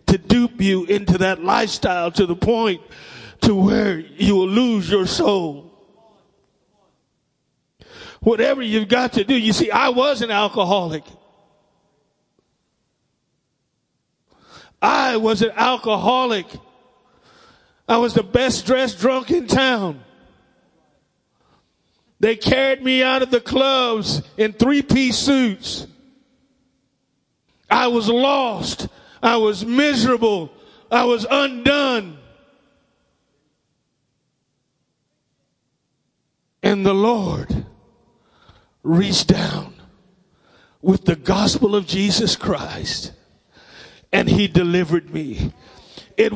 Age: 40-59